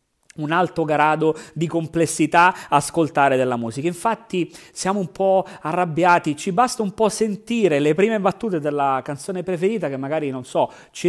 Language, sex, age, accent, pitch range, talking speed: Italian, male, 30-49, native, 135-185 Hz, 155 wpm